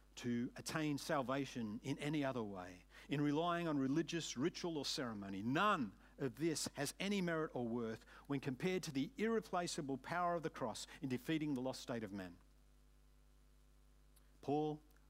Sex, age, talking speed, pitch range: male, 50-69, 155 wpm, 125-170 Hz